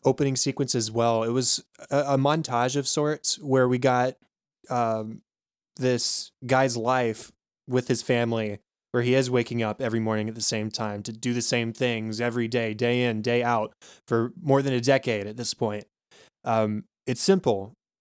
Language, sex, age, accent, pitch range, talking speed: English, male, 20-39, American, 115-130 Hz, 180 wpm